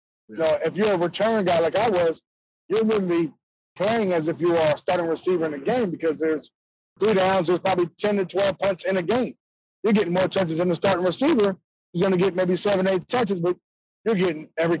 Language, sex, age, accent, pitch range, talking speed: English, male, 20-39, American, 160-190 Hz, 235 wpm